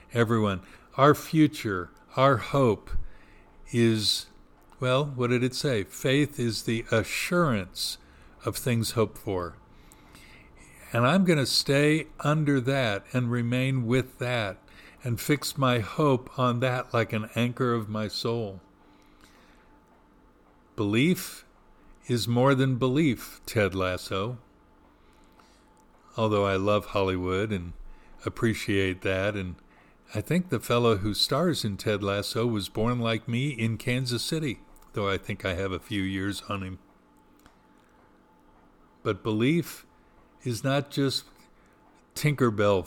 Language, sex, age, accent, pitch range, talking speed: English, male, 50-69, American, 100-135 Hz, 125 wpm